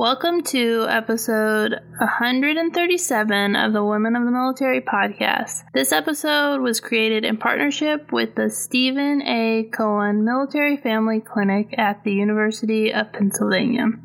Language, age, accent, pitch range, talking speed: English, 20-39, American, 210-255 Hz, 130 wpm